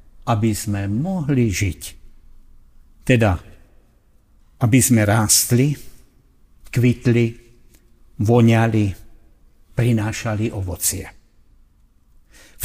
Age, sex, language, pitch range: 60-79, male, Slovak, 90-125 Hz